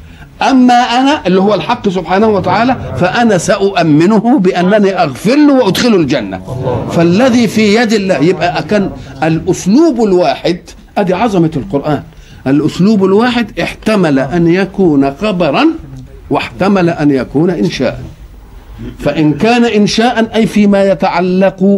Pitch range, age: 145-215 Hz, 50-69